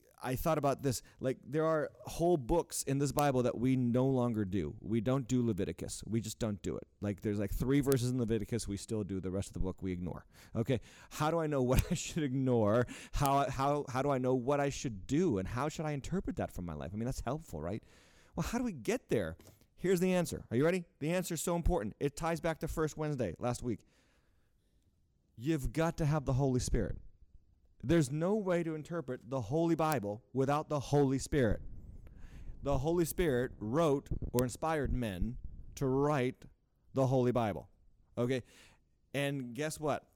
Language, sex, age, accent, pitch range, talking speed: English, male, 30-49, American, 105-145 Hz, 205 wpm